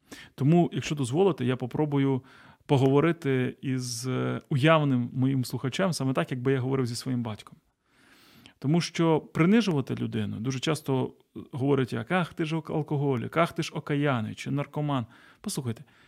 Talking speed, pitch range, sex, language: 140 wpm, 125-155 Hz, male, Ukrainian